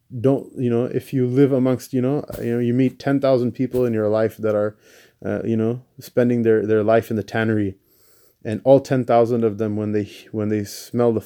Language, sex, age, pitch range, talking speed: English, male, 20-39, 110-120 Hz, 230 wpm